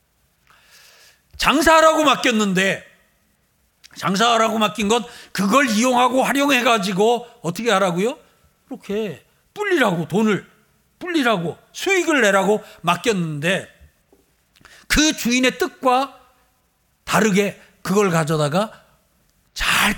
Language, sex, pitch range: Korean, male, 185-255 Hz